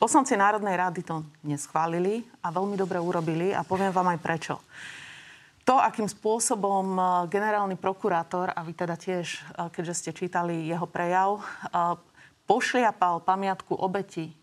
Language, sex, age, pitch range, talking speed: Slovak, female, 30-49, 175-200 Hz, 130 wpm